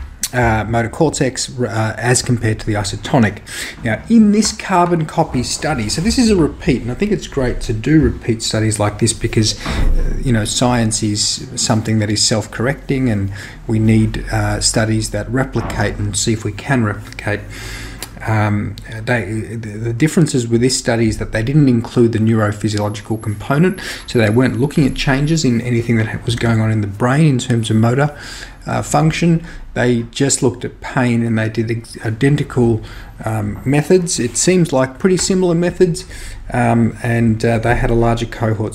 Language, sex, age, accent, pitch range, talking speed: English, male, 30-49, Australian, 110-130 Hz, 175 wpm